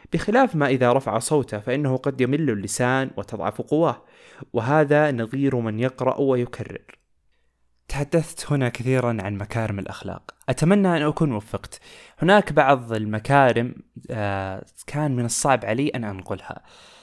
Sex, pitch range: male, 110-145 Hz